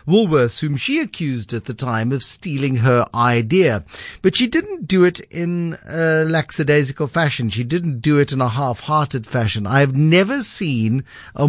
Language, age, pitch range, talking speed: English, 50-69, 125-155 Hz, 170 wpm